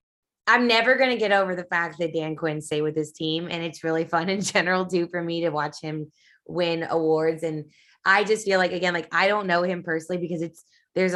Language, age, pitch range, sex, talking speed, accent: English, 20-39, 155-185 Hz, female, 235 wpm, American